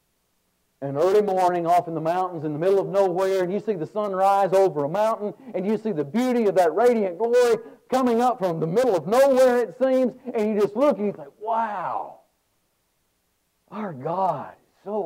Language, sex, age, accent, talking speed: English, male, 50-69, American, 205 wpm